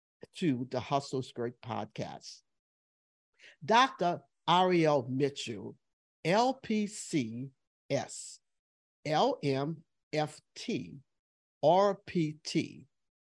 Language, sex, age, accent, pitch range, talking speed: English, male, 50-69, American, 135-210 Hz, 50 wpm